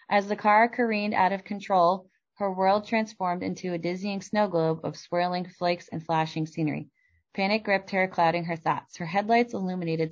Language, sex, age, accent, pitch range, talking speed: English, female, 20-39, American, 165-210 Hz, 180 wpm